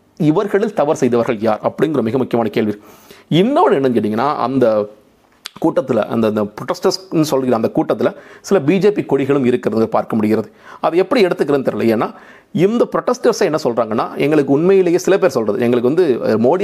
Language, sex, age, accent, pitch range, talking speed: Tamil, male, 40-59, native, 115-165 Hz, 125 wpm